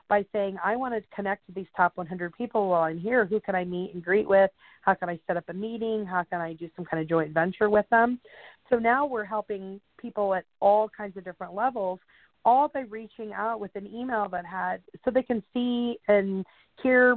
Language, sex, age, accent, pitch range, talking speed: English, female, 40-59, American, 185-230 Hz, 230 wpm